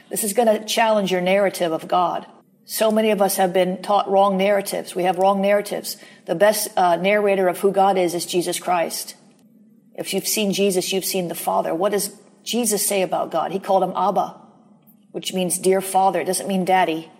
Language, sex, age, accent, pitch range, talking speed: English, female, 40-59, American, 170-200 Hz, 200 wpm